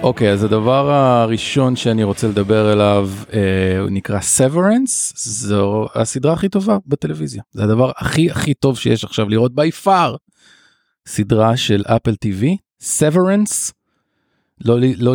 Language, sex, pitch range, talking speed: Hebrew, male, 110-150 Hz, 125 wpm